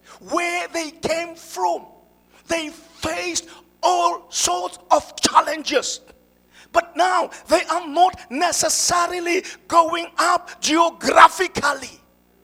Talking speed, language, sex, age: 90 wpm, English, male, 50-69